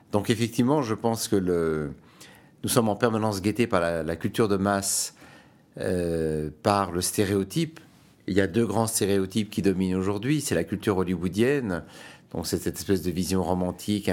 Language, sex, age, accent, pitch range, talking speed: French, male, 50-69, French, 90-115 Hz, 165 wpm